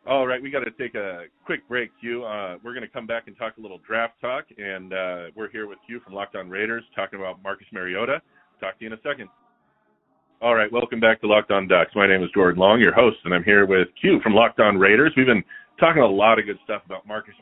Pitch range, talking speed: 100-135 Hz, 250 wpm